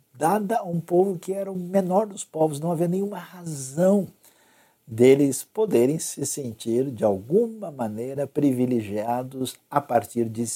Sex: male